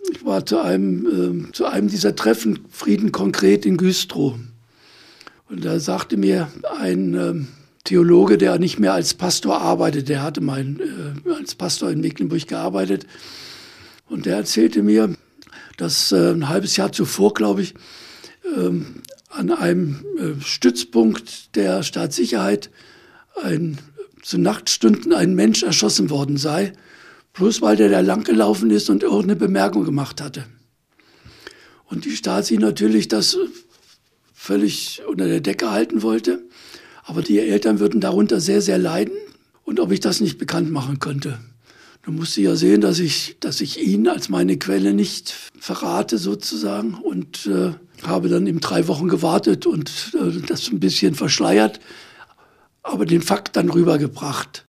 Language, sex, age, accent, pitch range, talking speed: German, male, 60-79, German, 105-155 Hz, 145 wpm